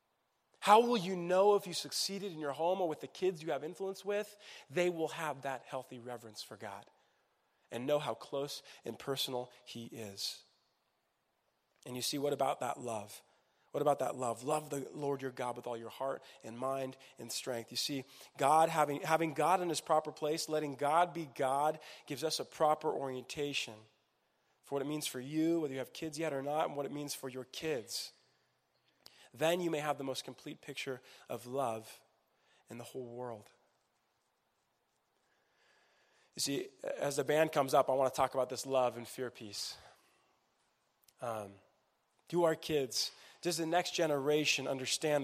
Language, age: English, 30-49